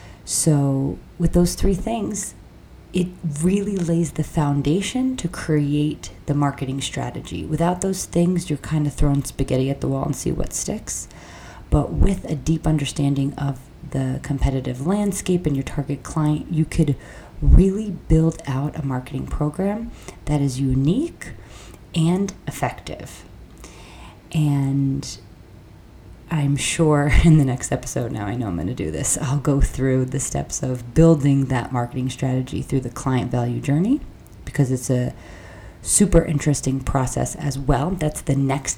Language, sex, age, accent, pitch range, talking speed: English, female, 30-49, American, 130-160 Hz, 150 wpm